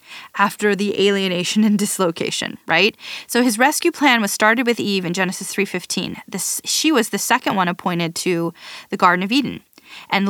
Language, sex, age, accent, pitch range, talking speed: English, female, 20-39, American, 195-250 Hz, 175 wpm